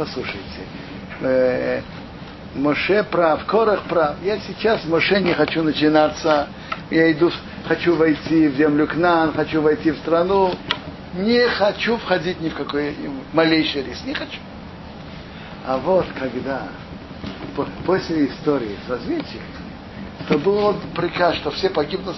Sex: male